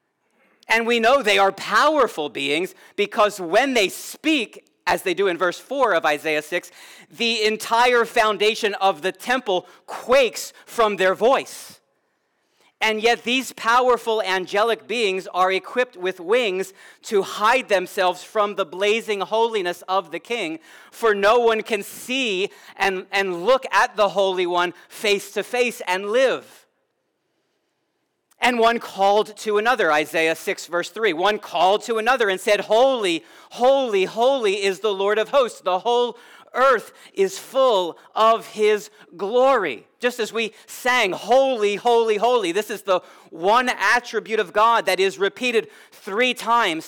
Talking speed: 150 wpm